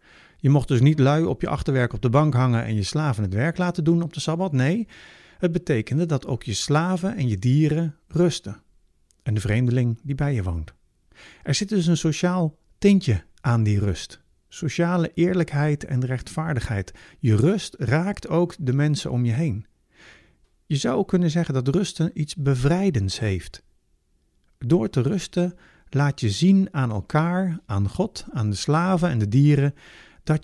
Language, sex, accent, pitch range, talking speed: Dutch, male, Dutch, 95-155 Hz, 175 wpm